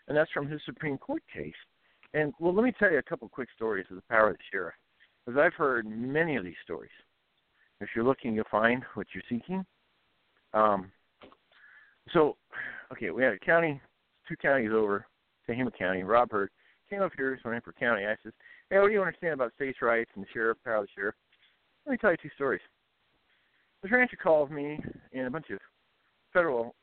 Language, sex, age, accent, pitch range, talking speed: English, male, 50-69, American, 110-155 Hz, 205 wpm